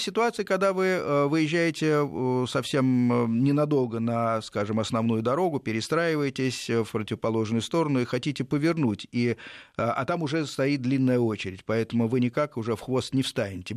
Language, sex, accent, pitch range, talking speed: Russian, male, native, 110-145 Hz, 140 wpm